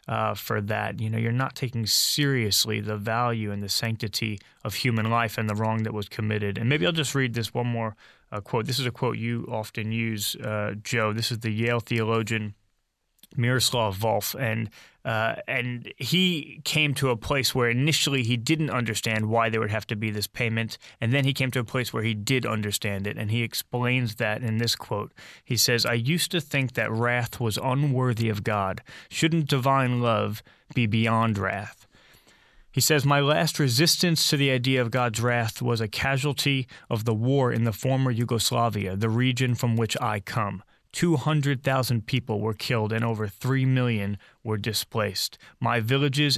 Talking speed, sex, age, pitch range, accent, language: 190 wpm, male, 20-39, 110-135 Hz, American, English